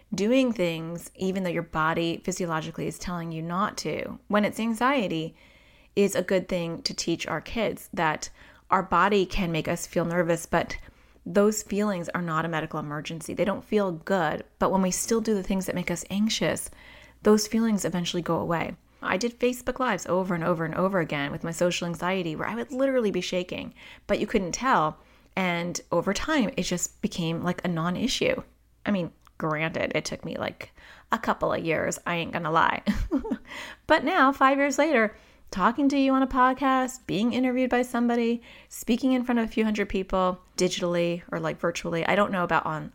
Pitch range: 170-230 Hz